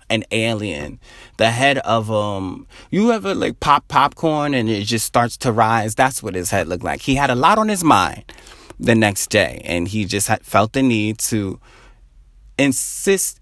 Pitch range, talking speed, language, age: 95-130 Hz, 190 wpm, English, 30-49